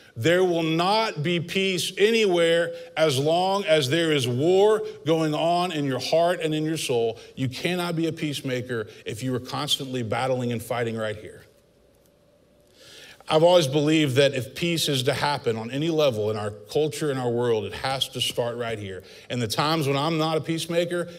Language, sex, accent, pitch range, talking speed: English, male, American, 125-160 Hz, 190 wpm